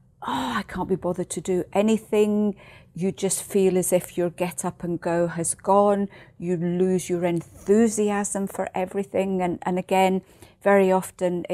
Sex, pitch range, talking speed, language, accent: female, 175-200 Hz, 160 wpm, English, British